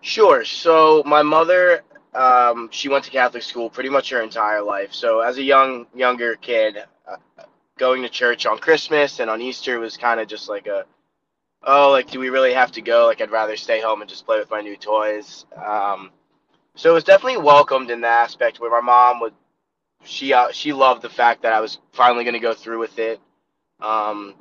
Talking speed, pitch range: 210 wpm, 110-135 Hz